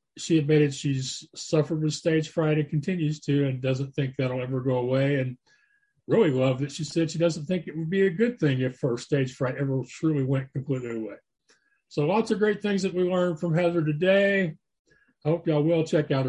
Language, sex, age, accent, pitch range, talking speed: English, male, 40-59, American, 140-175 Hz, 215 wpm